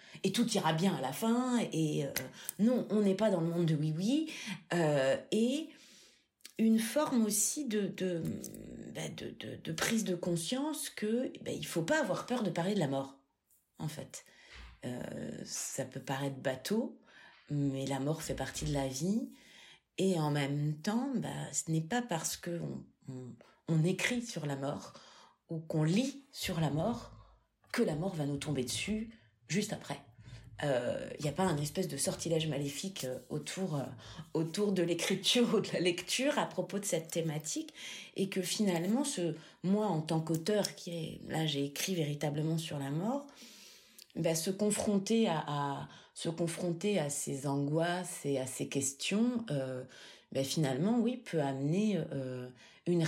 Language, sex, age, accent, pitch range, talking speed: French, female, 40-59, French, 145-210 Hz, 175 wpm